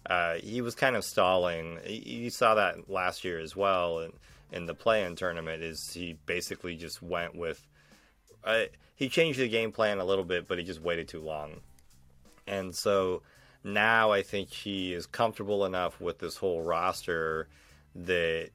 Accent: American